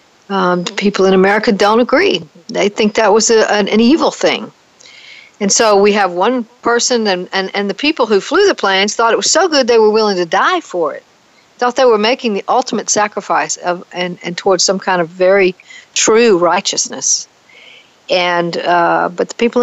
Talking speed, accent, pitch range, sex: 200 wpm, American, 185-230 Hz, female